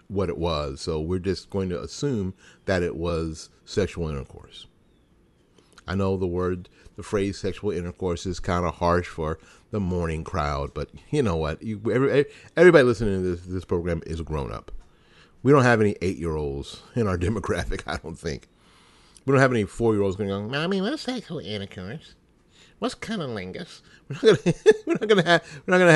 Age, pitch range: 50-69, 85-120 Hz